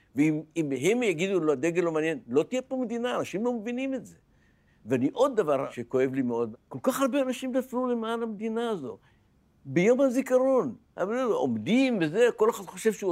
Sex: male